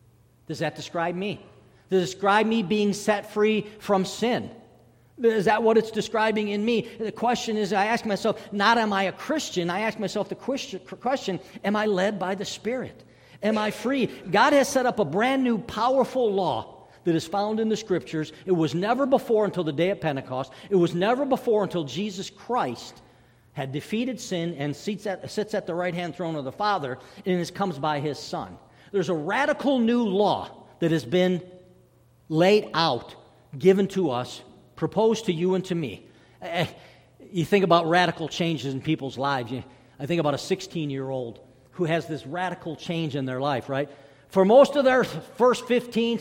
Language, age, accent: English, 50-69, American